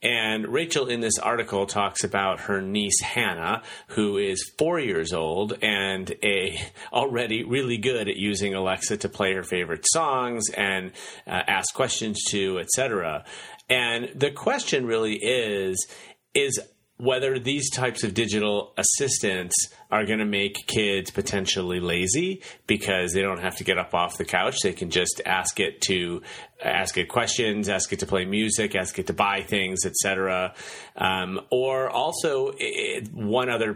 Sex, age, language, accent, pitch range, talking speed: male, 30-49, English, American, 95-120 Hz, 160 wpm